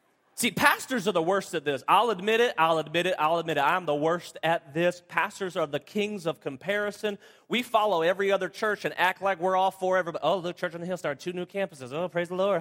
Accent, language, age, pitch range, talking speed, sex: American, English, 30-49, 160-215 Hz, 250 wpm, male